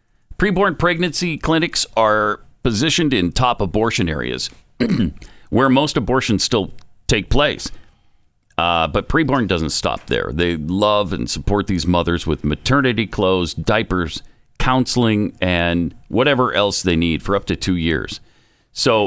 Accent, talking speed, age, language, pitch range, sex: American, 135 wpm, 50-69, English, 90-125 Hz, male